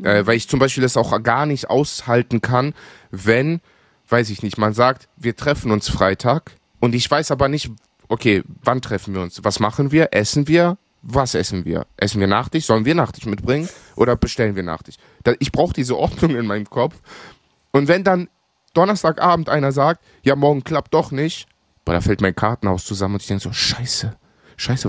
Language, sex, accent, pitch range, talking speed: German, male, German, 105-140 Hz, 190 wpm